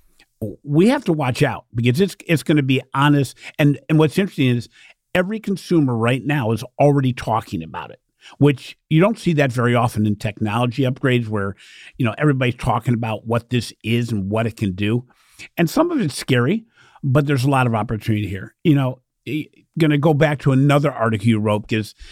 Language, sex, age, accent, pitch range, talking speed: English, male, 50-69, American, 115-140 Hz, 200 wpm